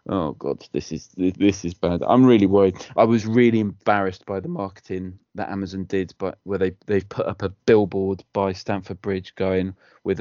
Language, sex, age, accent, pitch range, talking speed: English, male, 20-39, British, 95-110 Hz, 195 wpm